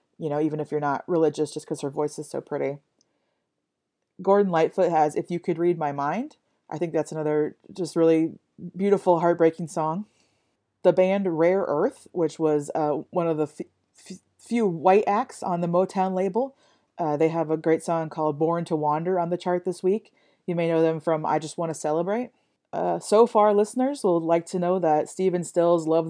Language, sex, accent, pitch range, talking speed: English, female, American, 155-190 Hz, 200 wpm